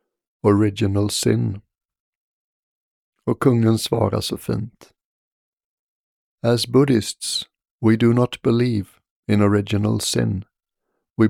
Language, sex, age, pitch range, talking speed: Swedish, male, 60-79, 105-125 Hz, 90 wpm